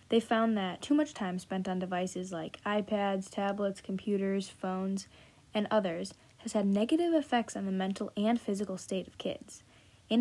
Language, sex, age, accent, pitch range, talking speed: English, female, 10-29, American, 185-225 Hz, 170 wpm